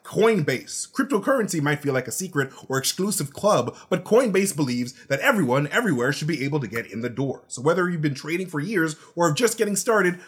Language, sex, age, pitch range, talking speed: English, male, 20-39, 125-180 Hz, 210 wpm